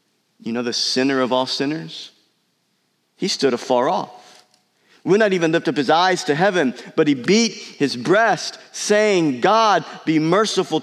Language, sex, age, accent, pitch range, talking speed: English, male, 50-69, American, 125-180 Hz, 160 wpm